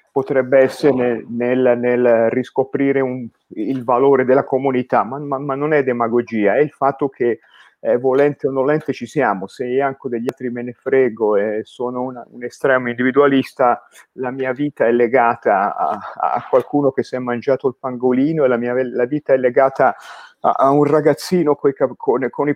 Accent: native